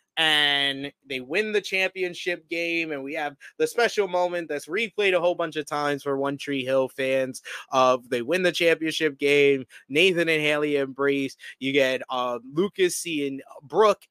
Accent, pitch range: American, 145-240 Hz